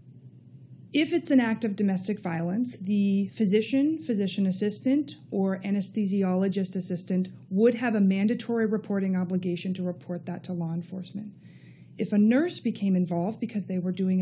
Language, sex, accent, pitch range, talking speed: English, female, American, 185-225 Hz, 150 wpm